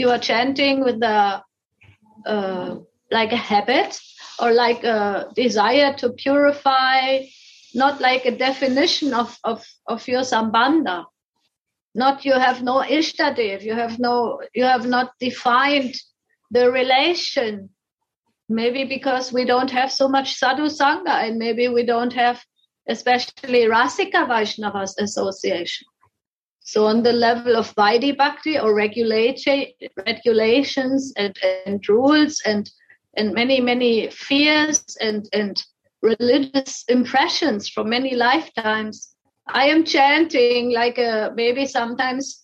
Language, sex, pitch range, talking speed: English, female, 230-280 Hz, 125 wpm